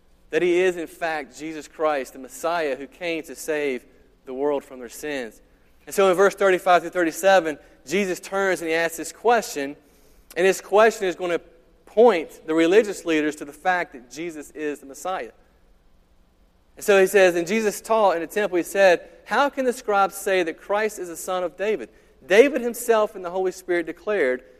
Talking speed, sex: 195 wpm, male